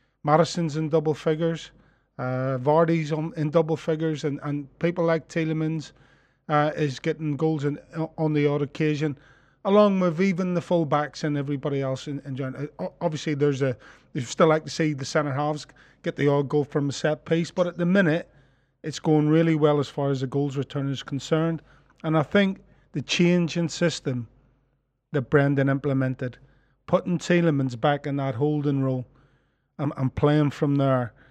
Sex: male